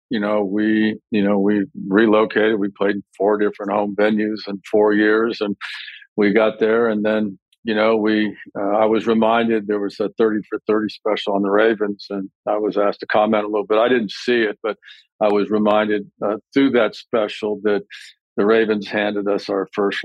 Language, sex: English, male